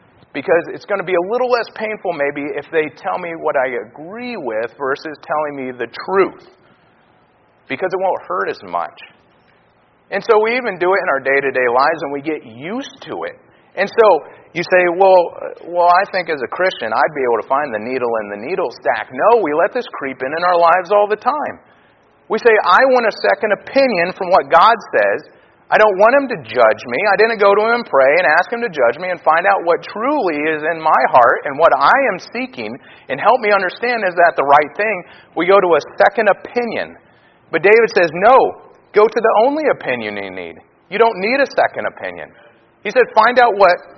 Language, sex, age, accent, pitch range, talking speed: English, male, 40-59, American, 155-235 Hz, 220 wpm